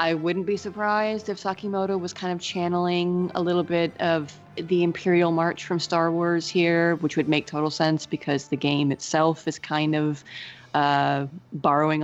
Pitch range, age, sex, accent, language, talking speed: 140-170 Hz, 30-49, female, American, English, 175 wpm